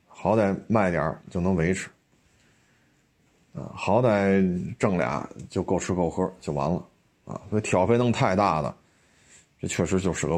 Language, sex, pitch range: Chinese, male, 90-105 Hz